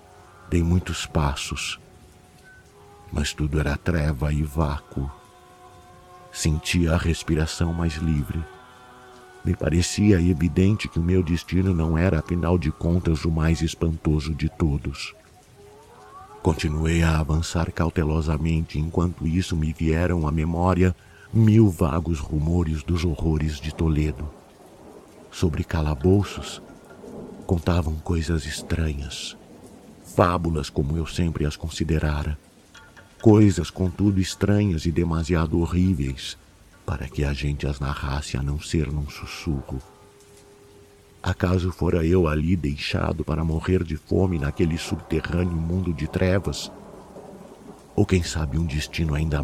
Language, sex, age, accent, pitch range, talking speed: Portuguese, male, 60-79, Brazilian, 75-90 Hz, 115 wpm